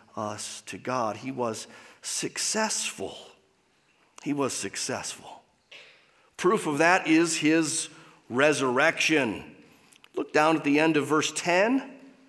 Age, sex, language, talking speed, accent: 40-59, male, English, 110 wpm, American